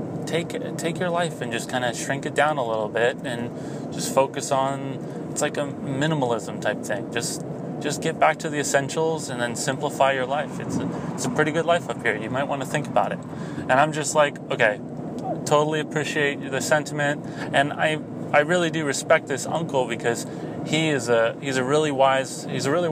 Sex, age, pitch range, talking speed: male, 30-49, 125-155 Hz, 210 wpm